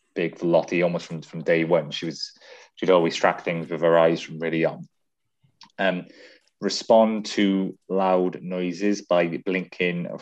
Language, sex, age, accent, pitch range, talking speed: English, male, 30-49, British, 85-100 Hz, 165 wpm